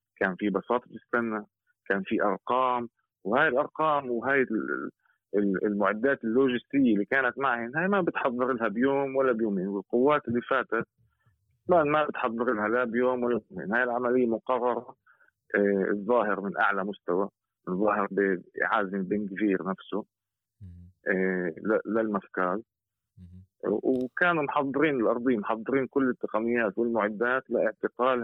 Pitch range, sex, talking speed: 105-135 Hz, male, 120 wpm